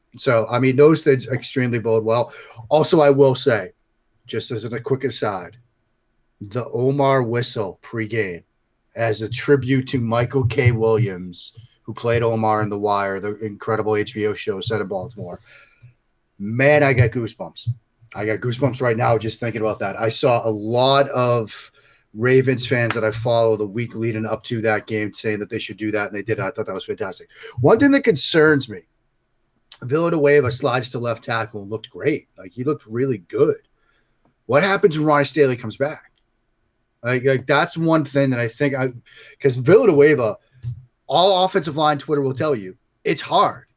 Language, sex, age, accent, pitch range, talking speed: English, male, 30-49, American, 115-140 Hz, 180 wpm